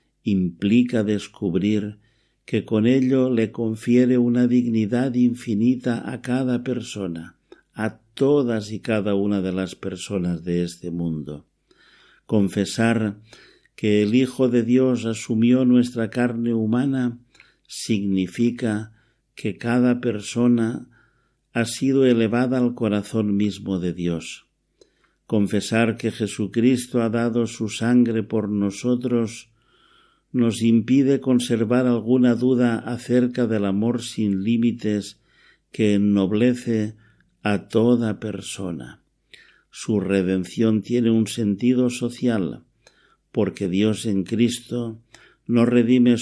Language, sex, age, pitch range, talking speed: Spanish, male, 50-69, 105-120 Hz, 105 wpm